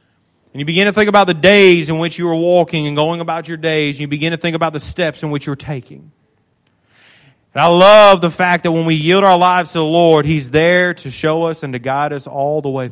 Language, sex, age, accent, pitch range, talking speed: English, male, 30-49, American, 155-200 Hz, 255 wpm